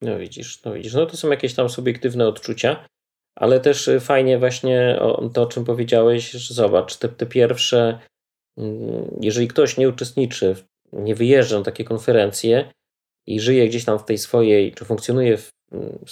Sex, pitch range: male, 110-125 Hz